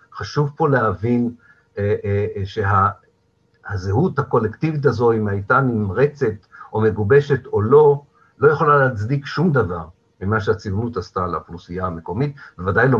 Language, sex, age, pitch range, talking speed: Hebrew, male, 50-69, 100-140 Hz, 135 wpm